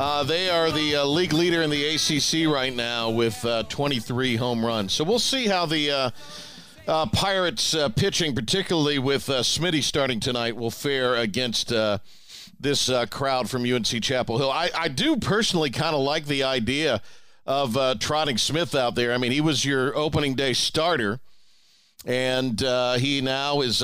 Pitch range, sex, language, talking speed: 125-155 Hz, male, English, 180 wpm